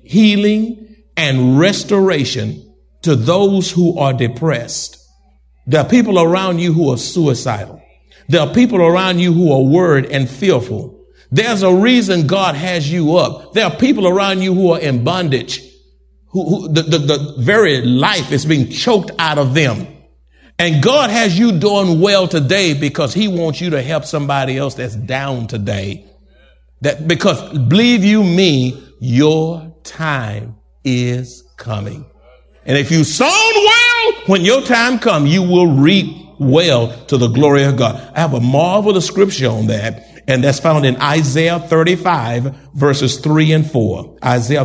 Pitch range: 120-180 Hz